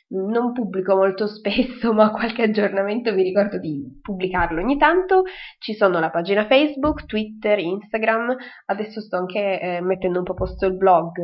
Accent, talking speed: native, 160 wpm